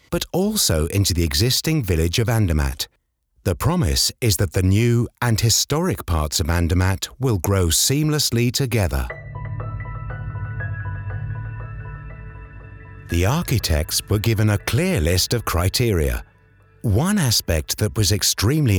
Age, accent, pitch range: 50-69, British, 90-125 Hz